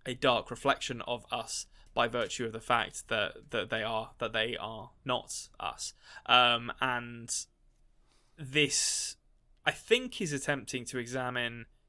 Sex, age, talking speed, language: male, 10-29, 140 wpm, English